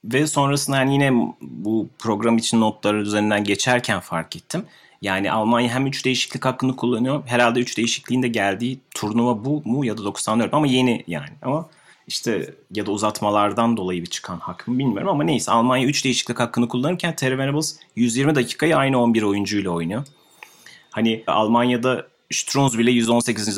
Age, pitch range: 30-49, 100-125 Hz